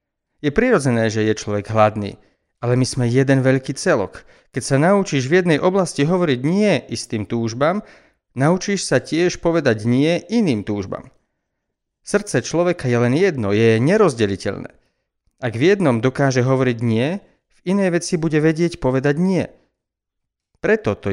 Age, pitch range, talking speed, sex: 40-59, 115-165 Hz, 145 wpm, male